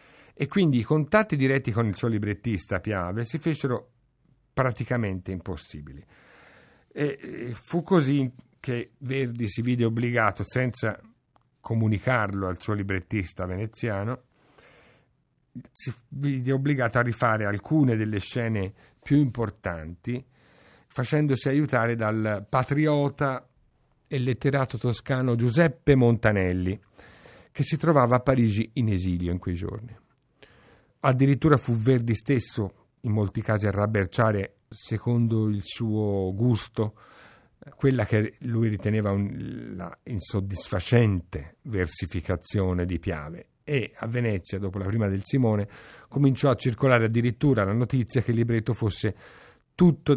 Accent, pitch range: native, 100-130 Hz